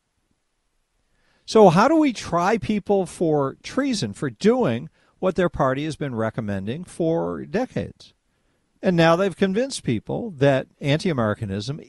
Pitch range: 130-195 Hz